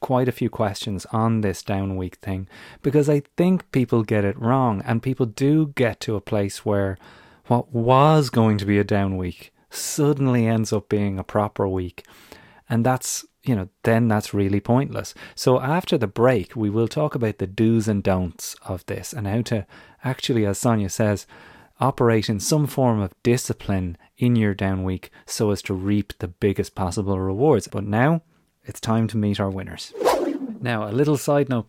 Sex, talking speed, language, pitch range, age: male, 185 wpm, English, 100-125 Hz, 30-49